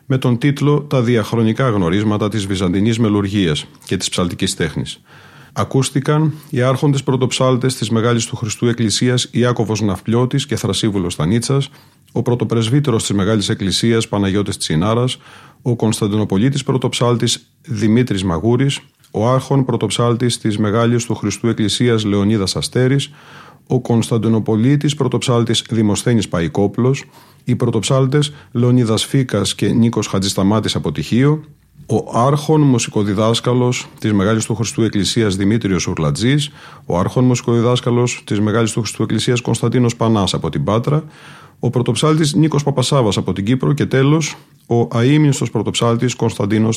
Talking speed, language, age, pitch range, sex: 125 wpm, Greek, 40-59, 110-135 Hz, male